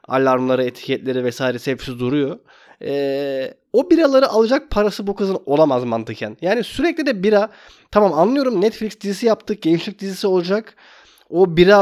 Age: 30-49